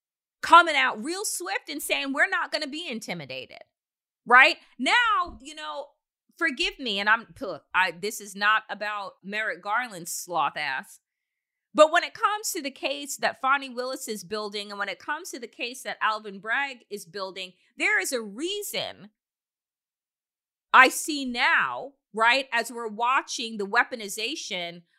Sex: female